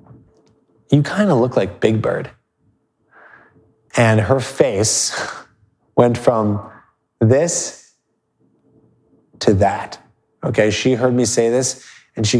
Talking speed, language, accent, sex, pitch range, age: 110 wpm, English, American, male, 100-125 Hz, 20-39